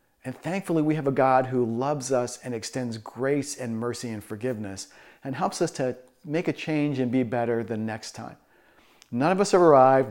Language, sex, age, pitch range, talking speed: English, male, 40-59, 125-155 Hz, 200 wpm